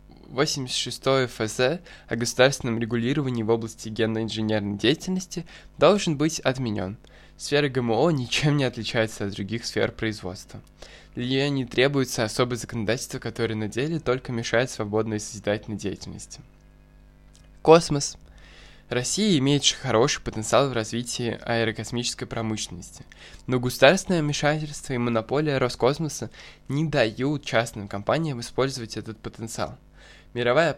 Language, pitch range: Russian, 115-140 Hz